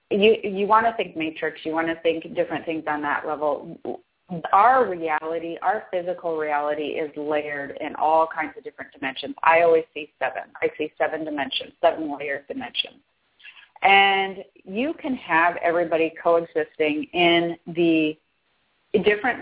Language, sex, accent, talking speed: English, female, American, 150 wpm